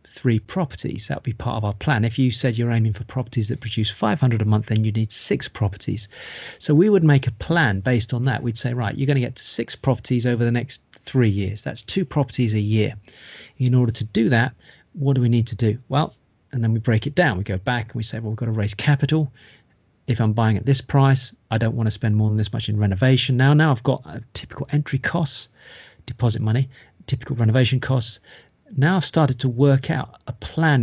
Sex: male